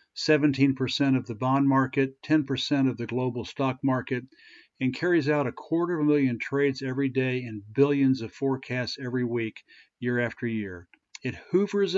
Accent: American